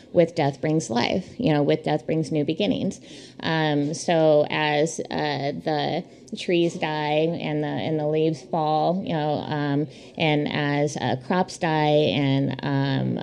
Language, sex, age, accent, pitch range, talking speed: English, female, 20-39, American, 150-170 Hz, 155 wpm